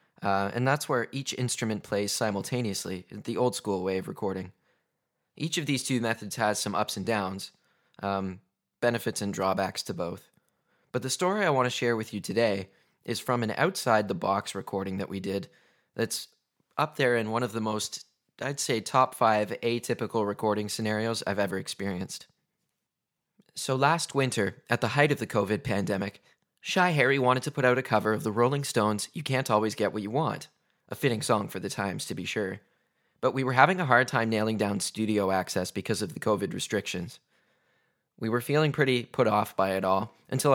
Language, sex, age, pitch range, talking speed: English, male, 20-39, 100-130 Hz, 190 wpm